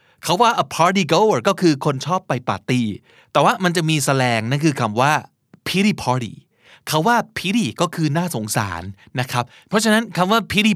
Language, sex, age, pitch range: Thai, male, 30-49, 135-180 Hz